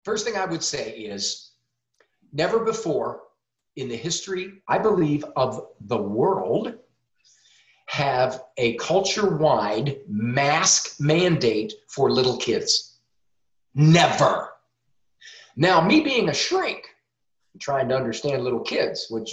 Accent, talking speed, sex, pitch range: American, 110 wpm, male, 140-220 Hz